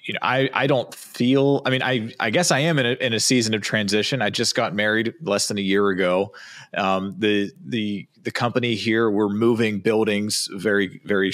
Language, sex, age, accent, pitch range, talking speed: English, male, 30-49, American, 100-120 Hz, 210 wpm